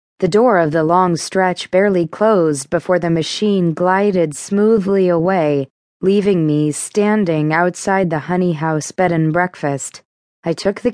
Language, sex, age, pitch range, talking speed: English, female, 20-39, 160-200 Hz, 150 wpm